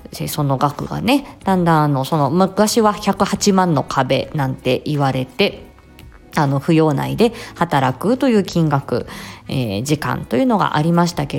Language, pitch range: Japanese, 140-200 Hz